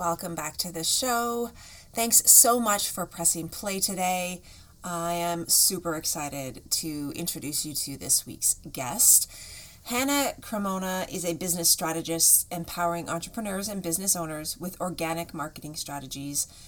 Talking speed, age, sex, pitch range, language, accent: 135 wpm, 30-49, female, 160-190 Hz, English, American